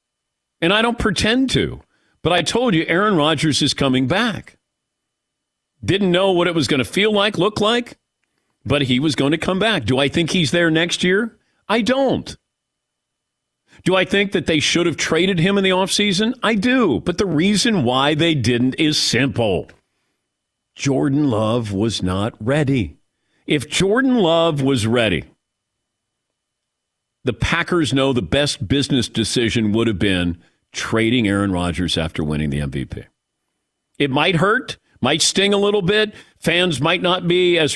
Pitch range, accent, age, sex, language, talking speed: 115-185 Hz, American, 50-69, male, English, 165 wpm